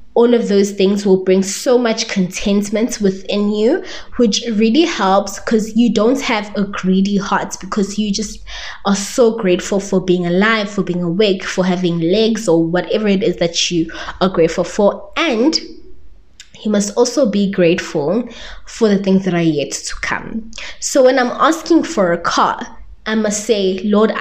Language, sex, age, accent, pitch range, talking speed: English, female, 20-39, South African, 185-230 Hz, 175 wpm